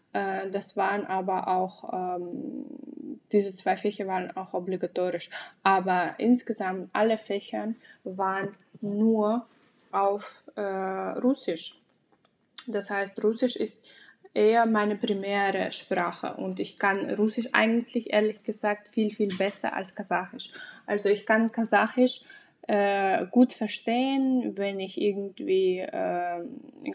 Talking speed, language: 115 wpm, German